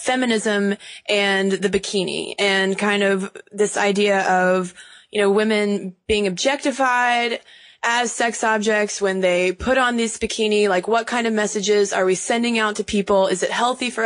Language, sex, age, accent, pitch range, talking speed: English, female, 20-39, American, 190-230 Hz, 165 wpm